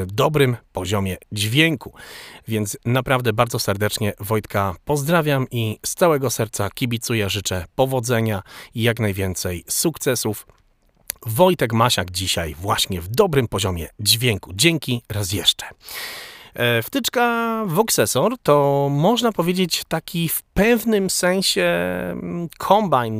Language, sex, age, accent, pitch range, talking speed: Polish, male, 40-59, native, 105-150 Hz, 105 wpm